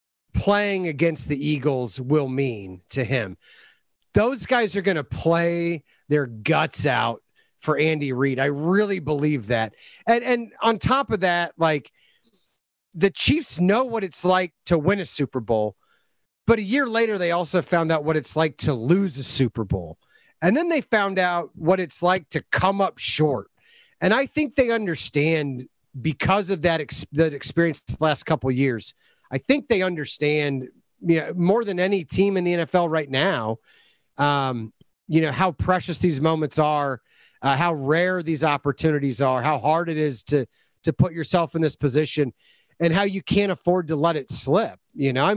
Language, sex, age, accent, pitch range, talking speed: English, male, 30-49, American, 140-180 Hz, 185 wpm